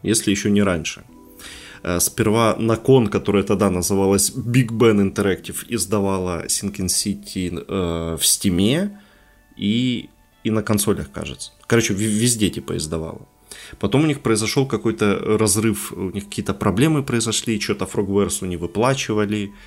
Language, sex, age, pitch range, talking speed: Ukrainian, male, 20-39, 95-115 Hz, 130 wpm